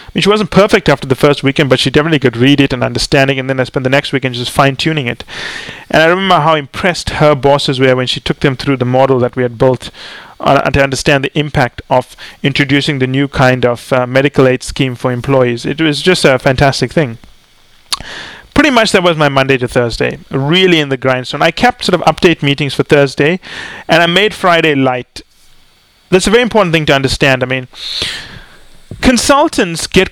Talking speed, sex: 205 wpm, male